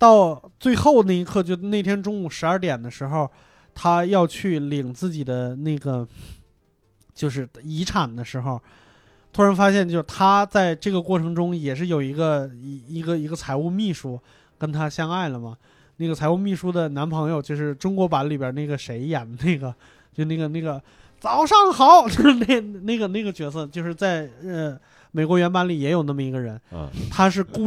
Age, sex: 20-39, male